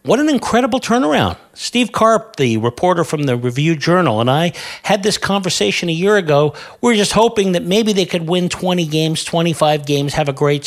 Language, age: English, 50-69